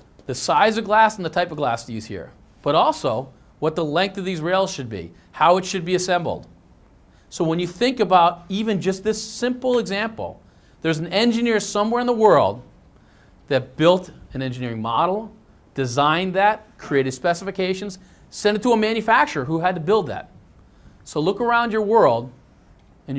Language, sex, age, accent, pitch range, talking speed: English, male, 40-59, American, 125-195 Hz, 180 wpm